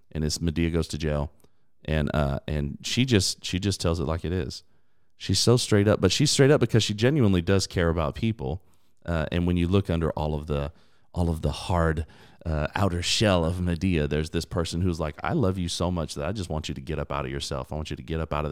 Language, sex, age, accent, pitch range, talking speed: English, male, 30-49, American, 80-100 Hz, 265 wpm